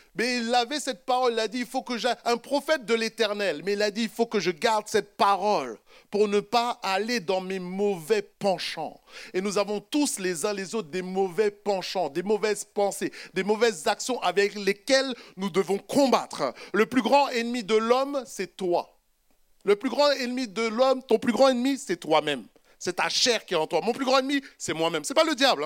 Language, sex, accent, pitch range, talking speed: French, male, French, 170-240 Hz, 220 wpm